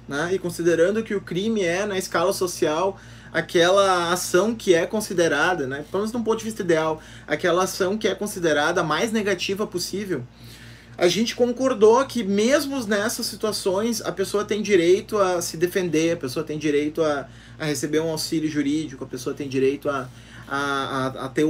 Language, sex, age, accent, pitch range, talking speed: Portuguese, male, 20-39, Brazilian, 155-200 Hz, 180 wpm